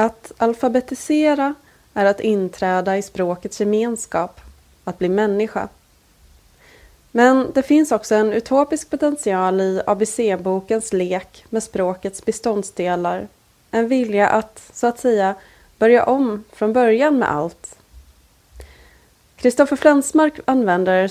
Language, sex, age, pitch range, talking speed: Swedish, female, 20-39, 190-235 Hz, 110 wpm